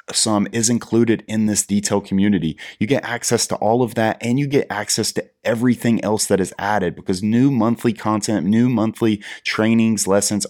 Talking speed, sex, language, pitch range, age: 185 wpm, male, English, 100-115 Hz, 30-49